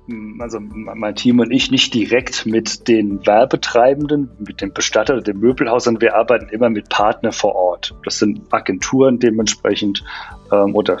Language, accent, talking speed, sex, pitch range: German, German, 160 wpm, male, 110-130 Hz